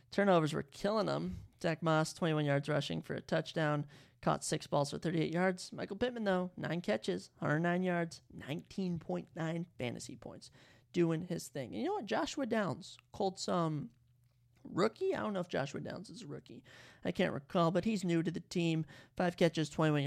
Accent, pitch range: American, 155-200 Hz